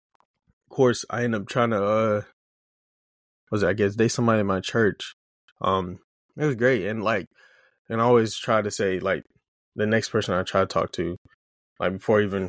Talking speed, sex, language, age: 190 wpm, male, English, 20-39